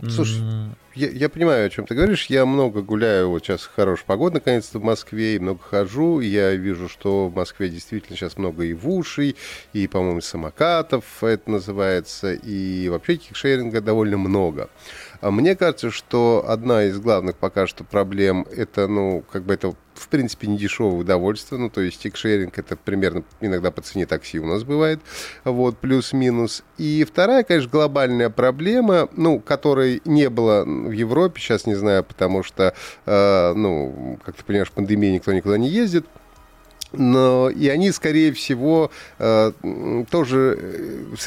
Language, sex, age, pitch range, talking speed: Russian, male, 30-49, 100-145 Hz, 160 wpm